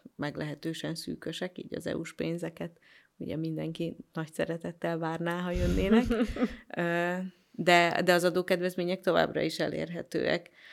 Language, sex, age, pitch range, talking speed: Hungarian, female, 30-49, 165-215 Hz, 115 wpm